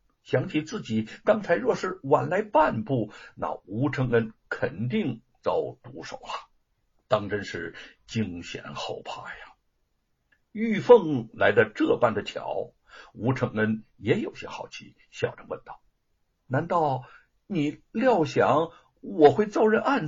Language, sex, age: Chinese, male, 60-79